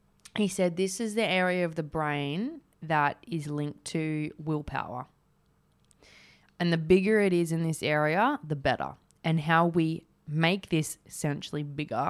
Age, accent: 20-39, Australian